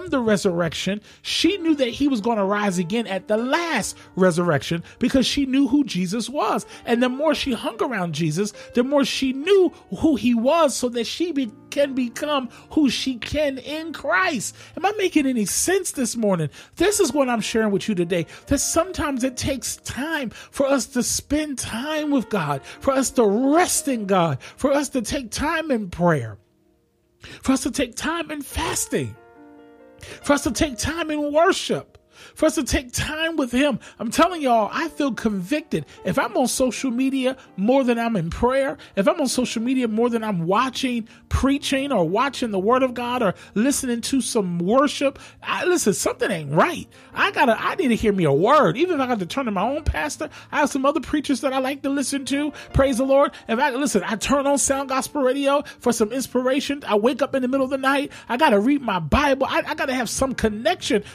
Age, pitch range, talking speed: 40-59, 230-300 Hz, 210 wpm